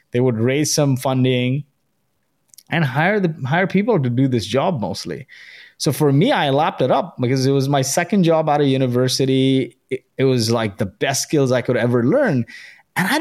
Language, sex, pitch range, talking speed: English, male, 125-150 Hz, 200 wpm